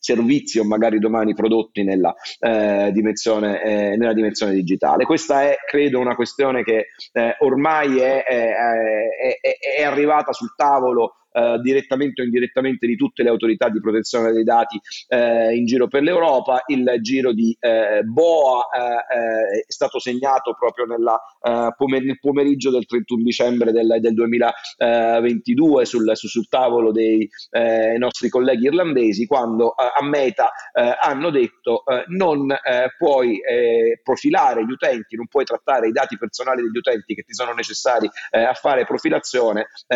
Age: 40-59